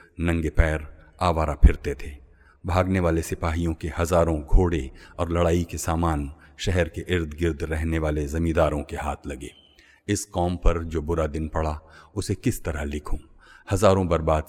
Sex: male